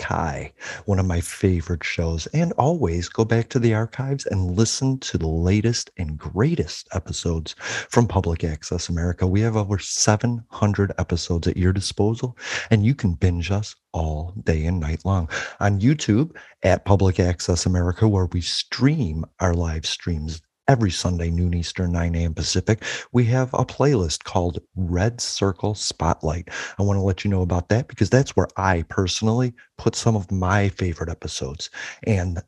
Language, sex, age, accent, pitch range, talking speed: English, male, 40-59, American, 90-115 Hz, 165 wpm